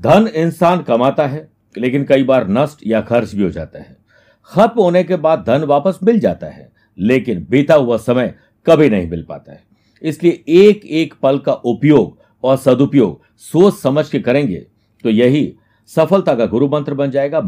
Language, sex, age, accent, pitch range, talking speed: Hindi, male, 60-79, native, 115-155 Hz, 180 wpm